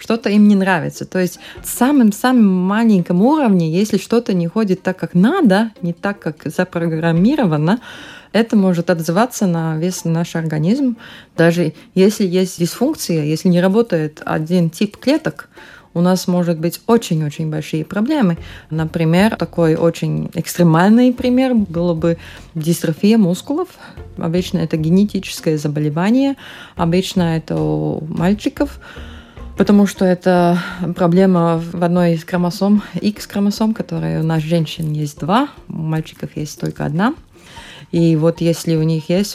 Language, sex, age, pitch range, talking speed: Russian, female, 20-39, 165-205 Hz, 135 wpm